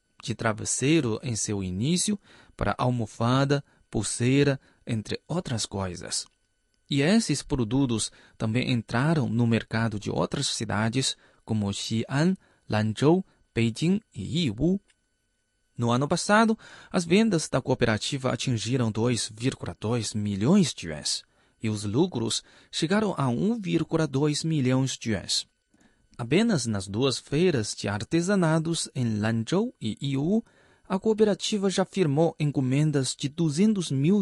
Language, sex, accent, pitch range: Chinese, male, Brazilian, 115-165 Hz